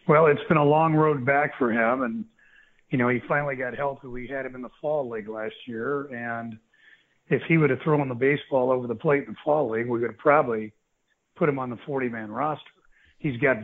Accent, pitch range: American, 125-150 Hz